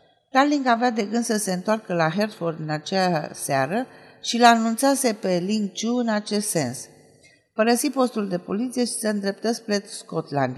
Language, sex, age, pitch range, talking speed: Romanian, female, 50-69, 170-220 Hz, 165 wpm